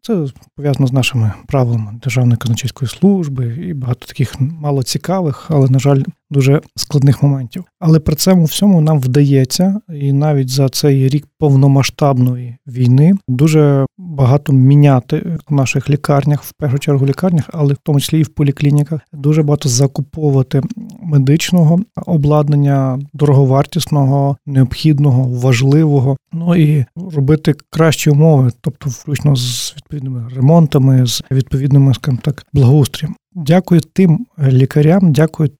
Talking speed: 125 wpm